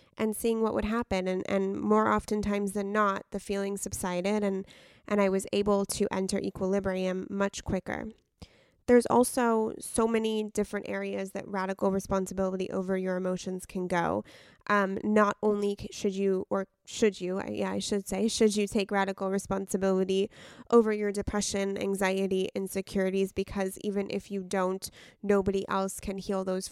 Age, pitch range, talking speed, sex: 20-39, 195-215 Hz, 160 wpm, female